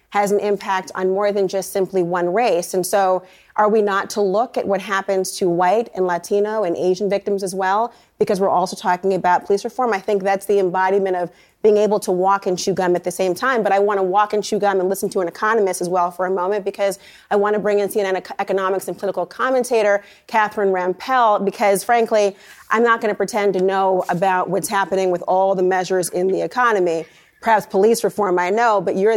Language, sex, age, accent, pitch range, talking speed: English, female, 30-49, American, 185-225 Hz, 225 wpm